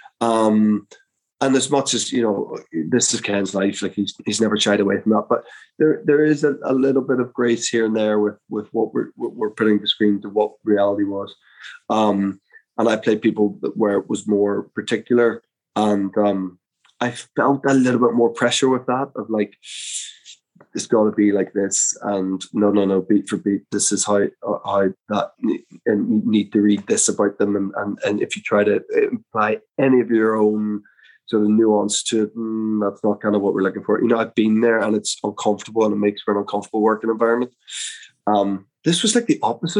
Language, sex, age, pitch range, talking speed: English, male, 20-39, 105-125 Hz, 215 wpm